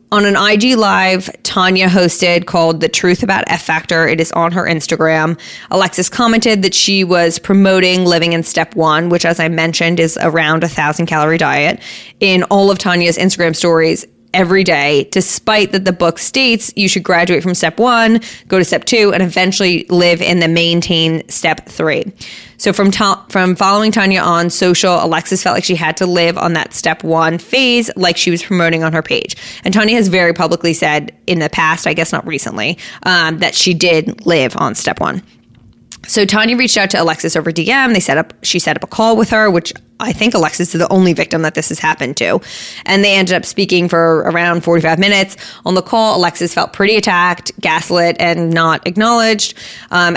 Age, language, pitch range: 20-39, English, 165-195 Hz